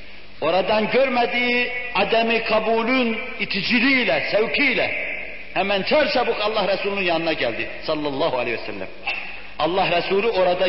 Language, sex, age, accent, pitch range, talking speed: Turkish, male, 60-79, native, 180-235 Hz, 110 wpm